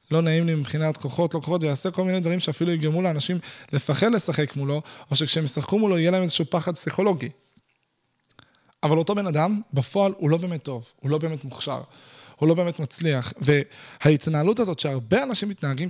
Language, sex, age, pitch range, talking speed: Hebrew, male, 20-39, 140-180 Hz, 180 wpm